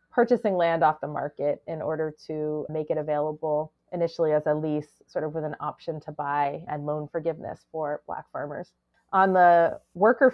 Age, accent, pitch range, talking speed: 30-49, American, 155-190 Hz, 180 wpm